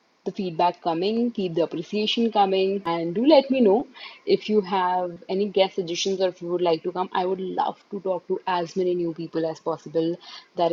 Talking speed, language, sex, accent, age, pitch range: 215 wpm, Hindi, female, native, 20-39, 180-230 Hz